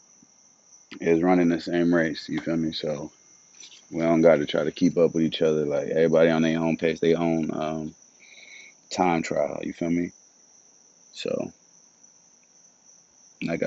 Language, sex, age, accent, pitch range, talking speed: English, male, 30-49, American, 80-85 Hz, 160 wpm